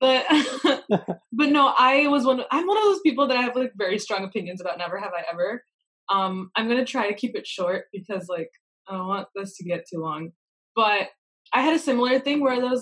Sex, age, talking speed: female, 20-39, 240 wpm